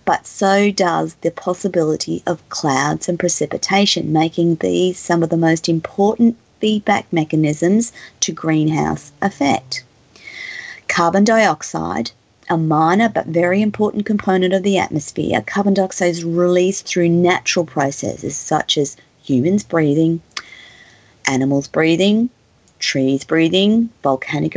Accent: Australian